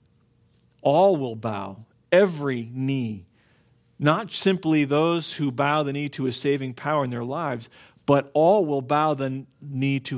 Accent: American